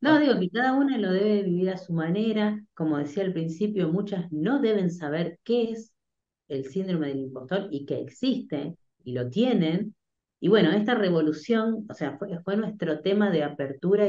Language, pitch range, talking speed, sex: Spanish, 155-205 Hz, 185 wpm, female